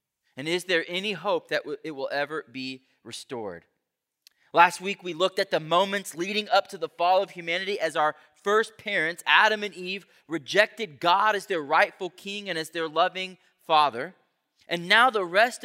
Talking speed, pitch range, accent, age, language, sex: 180 wpm, 145-195 Hz, American, 30-49, English, male